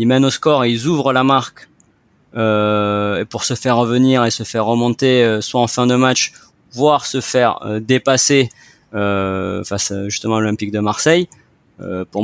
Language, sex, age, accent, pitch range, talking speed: French, male, 30-49, French, 105-130 Hz, 190 wpm